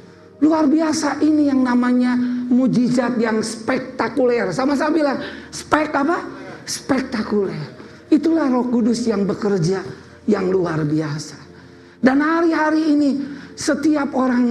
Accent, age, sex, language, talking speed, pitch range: native, 50-69, male, Indonesian, 110 wpm, 235-310 Hz